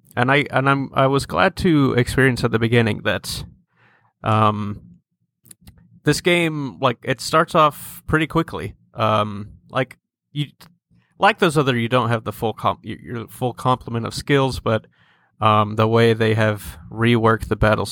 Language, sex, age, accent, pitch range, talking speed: English, male, 30-49, American, 110-130 Hz, 155 wpm